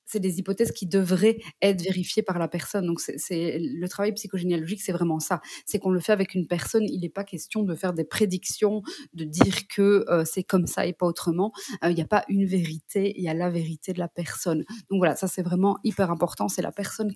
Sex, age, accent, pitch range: female, 20-39, French, 175-205 Hz